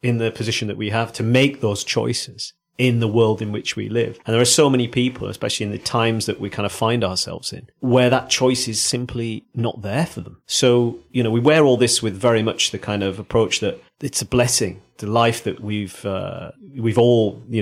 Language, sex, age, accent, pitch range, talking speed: English, male, 40-59, British, 105-125 Hz, 235 wpm